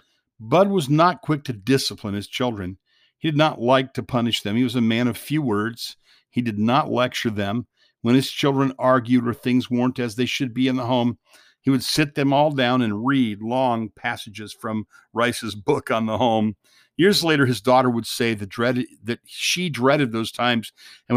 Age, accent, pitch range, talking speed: 50-69, American, 110-135 Hz, 200 wpm